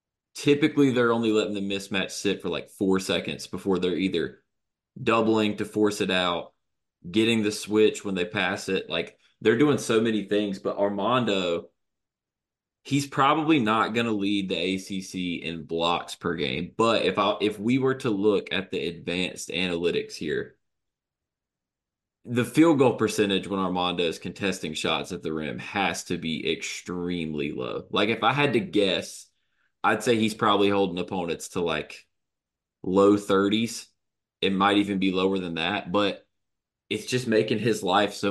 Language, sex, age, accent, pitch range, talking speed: English, male, 20-39, American, 95-115 Hz, 165 wpm